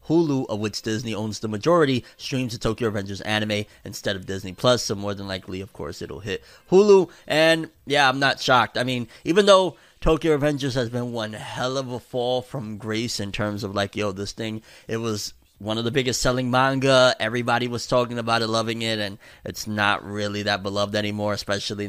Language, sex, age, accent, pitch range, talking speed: English, male, 30-49, American, 105-140 Hz, 205 wpm